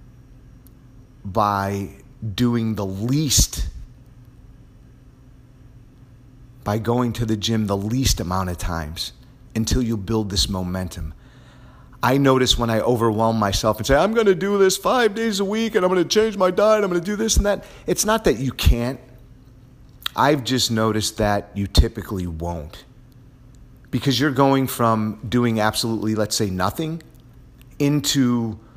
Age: 40-59